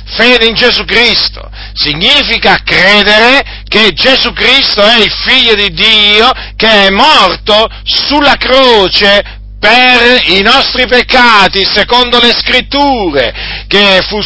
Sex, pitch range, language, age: male, 205-255 Hz, Italian, 50-69